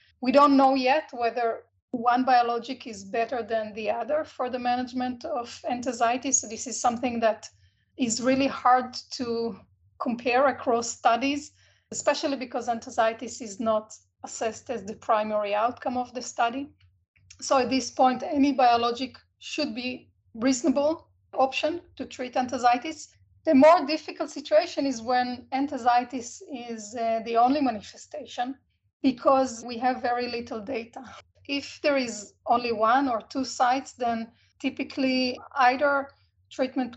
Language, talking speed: English, 140 wpm